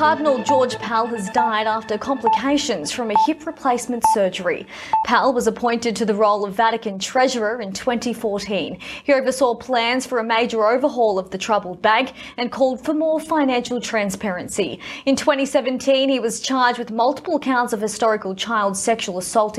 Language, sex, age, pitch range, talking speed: English, female, 20-39, 220-285 Hz, 160 wpm